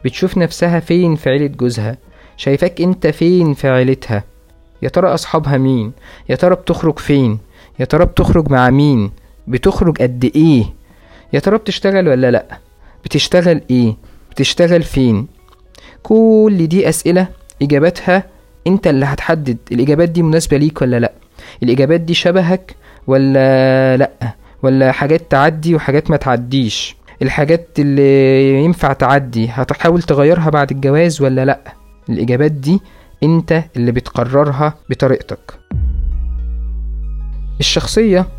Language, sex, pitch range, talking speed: Arabic, male, 125-160 Hz, 120 wpm